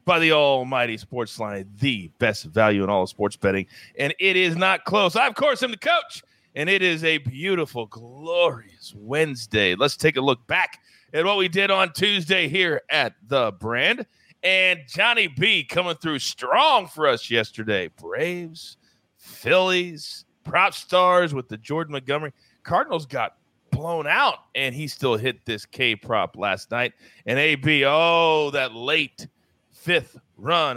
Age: 30-49